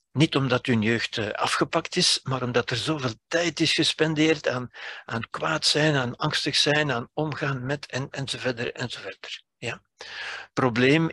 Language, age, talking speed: Dutch, 60-79, 135 wpm